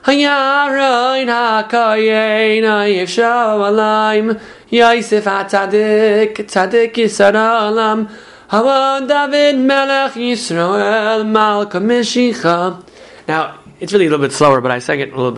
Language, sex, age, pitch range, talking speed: English, male, 20-39, 135-215 Hz, 50 wpm